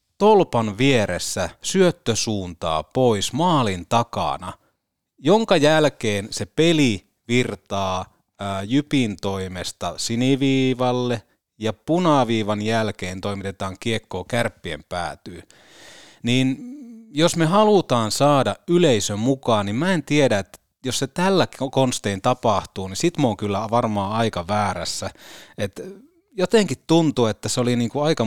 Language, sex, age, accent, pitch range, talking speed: Finnish, male, 30-49, native, 100-140 Hz, 115 wpm